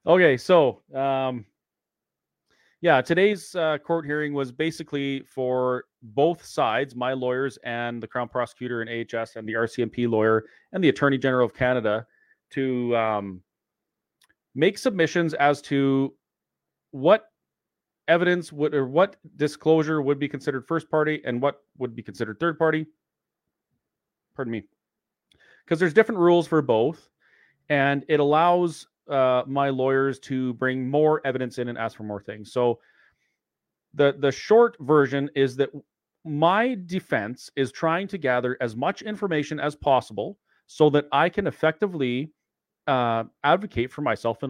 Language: English